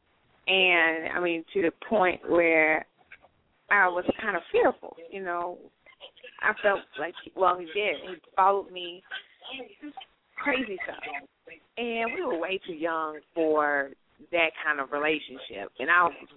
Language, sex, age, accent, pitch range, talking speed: English, female, 30-49, American, 160-240 Hz, 145 wpm